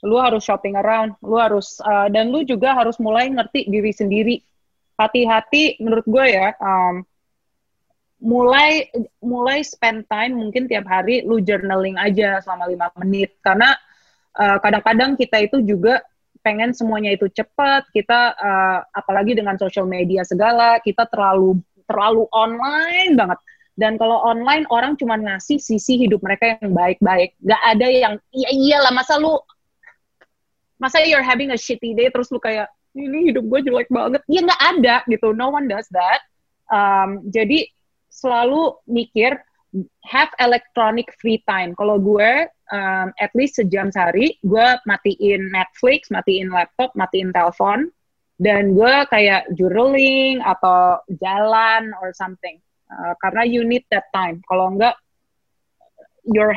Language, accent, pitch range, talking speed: Indonesian, native, 195-250 Hz, 140 wpm